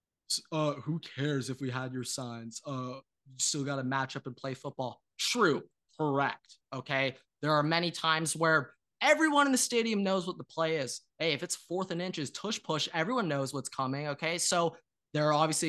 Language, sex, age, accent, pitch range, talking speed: English, male, 20-39, American, 135-175 Hz, 200 wpm